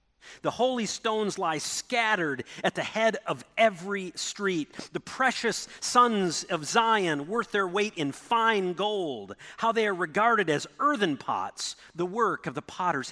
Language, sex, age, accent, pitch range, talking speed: English, male, 40-59, American, 135-210 Hz, 155 wpm